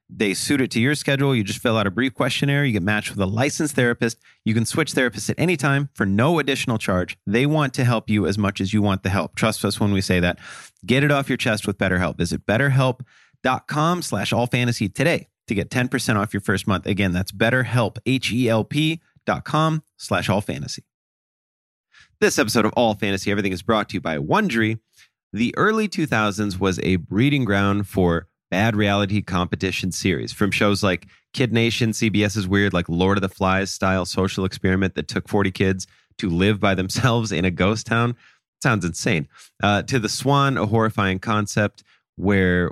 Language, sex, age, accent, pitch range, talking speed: English, male, 30-49, American, 95-125 Hz, 190 wpm